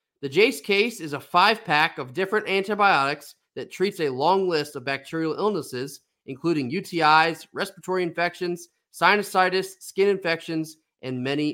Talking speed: 140 wpm